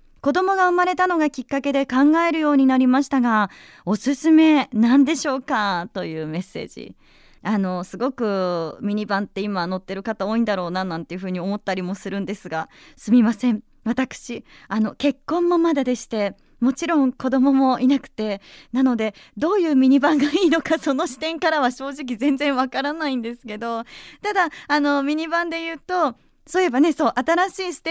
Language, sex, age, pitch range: Japanese, female, 20-39, 210-305 Hz